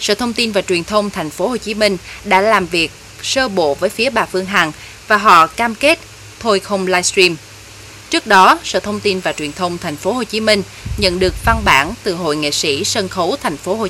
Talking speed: 235 wpm